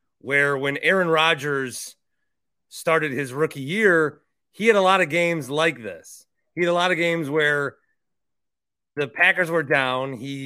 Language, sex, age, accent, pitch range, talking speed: English, male, 30-49, American, 135-165 Hz, 160 wpm